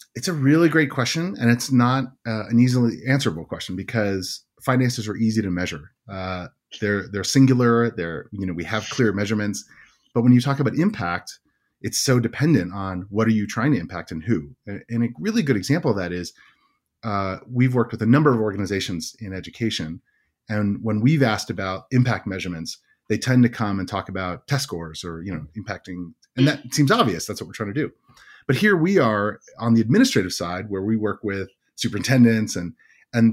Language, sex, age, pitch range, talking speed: English, male, 30-49, 95-125 Hz, 200 wpm